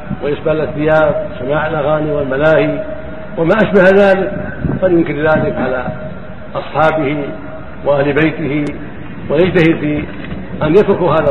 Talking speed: 100 wpm